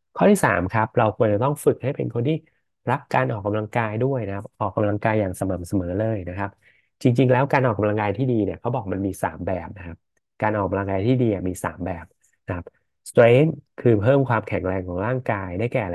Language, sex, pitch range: Thai, male, 95-120 Hz